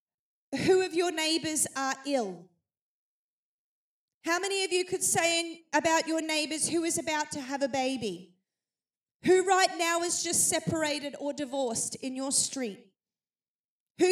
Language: English